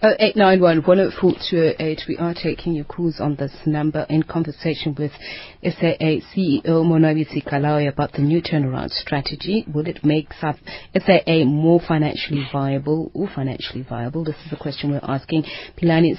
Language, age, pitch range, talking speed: English, 30-49, 145-165 Hz, 165 wpm